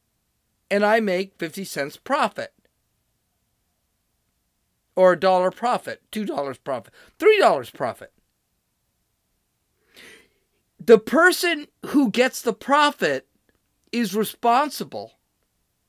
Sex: male